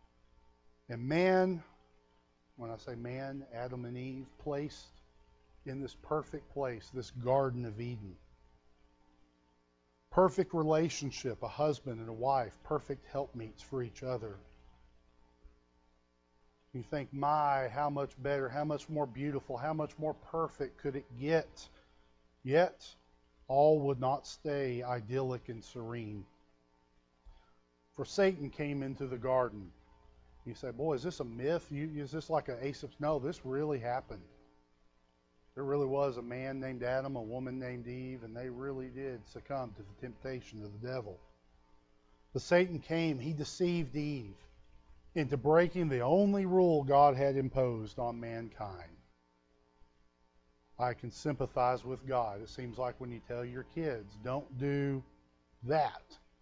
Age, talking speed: 40-59, 140 wpm